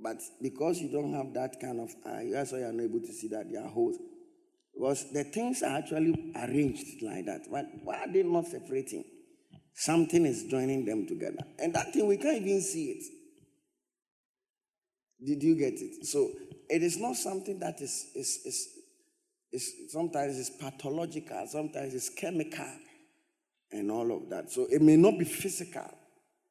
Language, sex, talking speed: English, male, 175 wpm